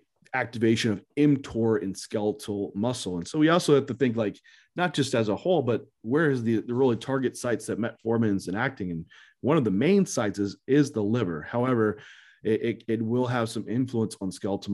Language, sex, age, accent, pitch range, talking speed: English, male, 30-49, American, 100-130 Hz, 210 wpm